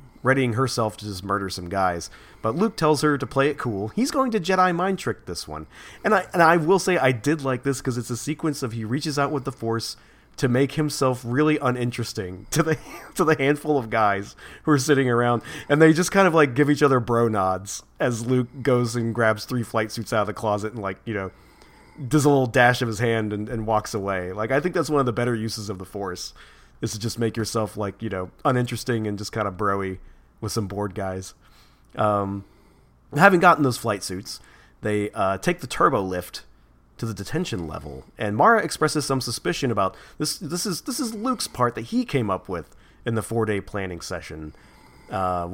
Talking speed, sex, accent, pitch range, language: 220 wpm, male, American, 100-145 Hz, English